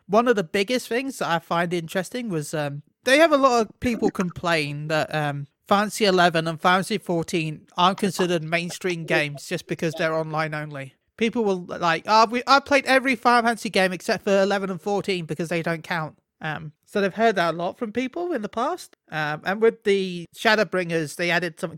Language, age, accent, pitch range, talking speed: English, 30-49, British, 160-200 Hz, 205 wpm